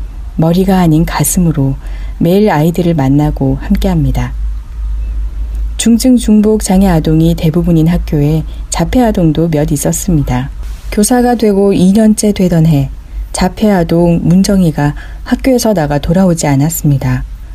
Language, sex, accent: Korean, female, native